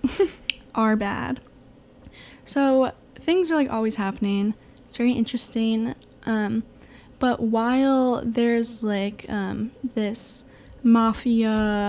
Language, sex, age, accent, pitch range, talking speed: English, female, 10-29, American, 210-245 Hz, 95 wpm